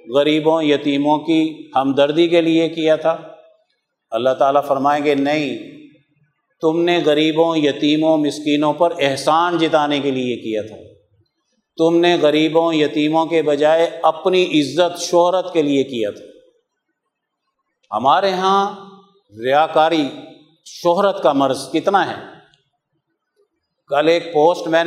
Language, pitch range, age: Urdu, 145-175 Hz, 50-69